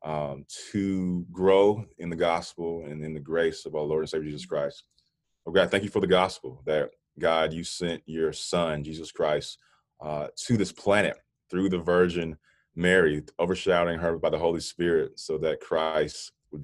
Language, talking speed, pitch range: English, 180 wpm, 75-90 Hz